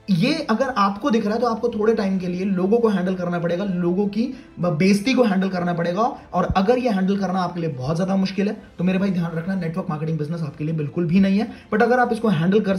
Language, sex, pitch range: Hindi, male, 175-230 Hz